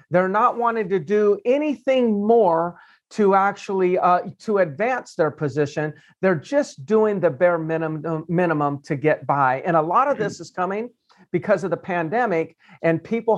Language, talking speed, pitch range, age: English, 170 wpm, 155-195 Hz, 50-69